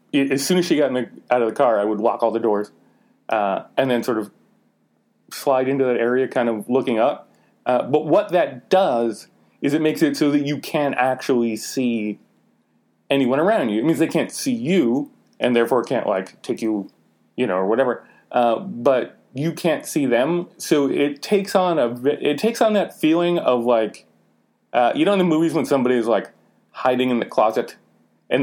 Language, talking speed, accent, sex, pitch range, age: English, 205 wpm, American, male, 115-155 Hz, 30-49